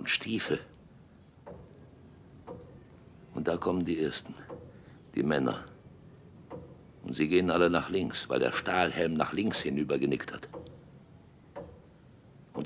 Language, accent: German, German